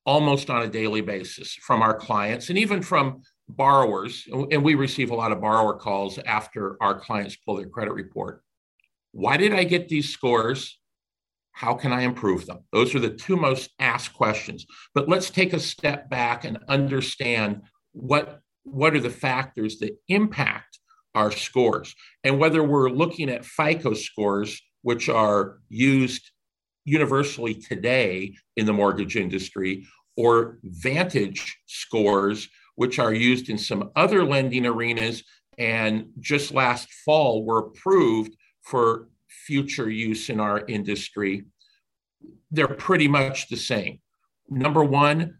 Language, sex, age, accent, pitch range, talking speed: English, male, 50-69, American, 110-145 Hz, 145 wpm